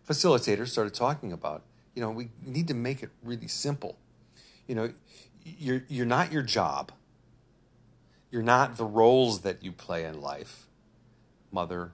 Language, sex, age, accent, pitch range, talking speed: English, male, 50-69, American, 100-125 Hz, 150 wpm